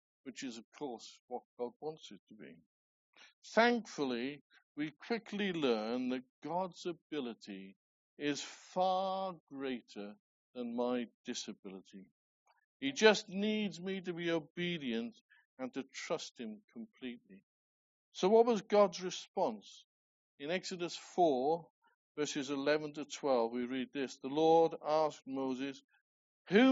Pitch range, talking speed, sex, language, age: 145-215 Hz, 125 wpm, male, English, 60-79